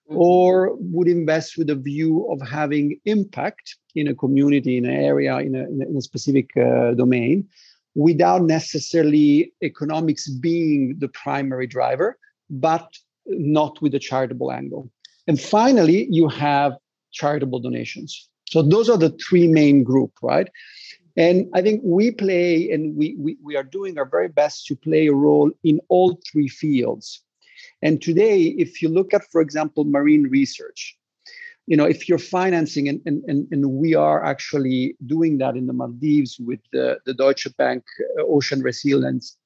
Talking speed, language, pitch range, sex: 160 wpm, English, 140-175 Hz, male